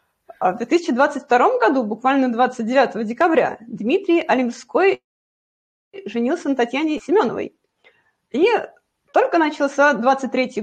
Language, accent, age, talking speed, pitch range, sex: Russian, native, 30-49, 90 wpm, 230-330 Hz, female